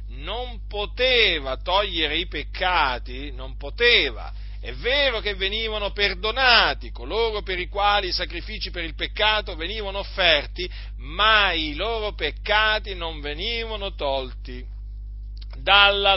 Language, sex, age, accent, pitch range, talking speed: Italian, male, 40-59, native, 150-205 Hz, 115 wpm